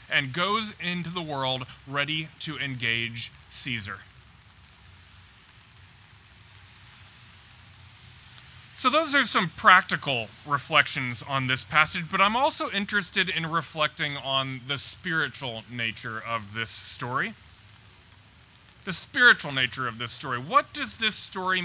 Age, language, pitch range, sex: 20-39, English, 110-165 Hz, male